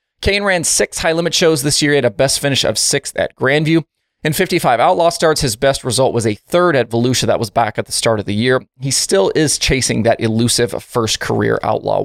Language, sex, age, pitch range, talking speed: English, male, 20-39, 120-175 Hz, 230 wpm